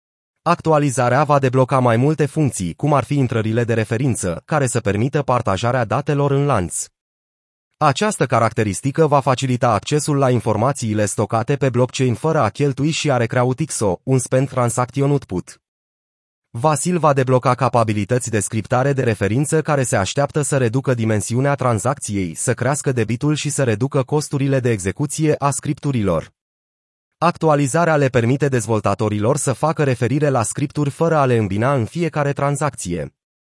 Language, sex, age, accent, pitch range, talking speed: Romanian, male, 30-49, native, 115-150 Hz, 145 wpm